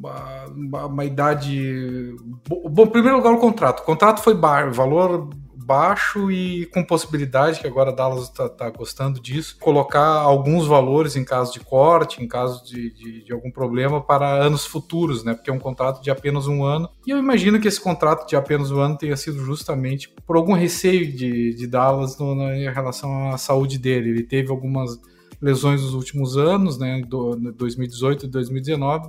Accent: Brazilian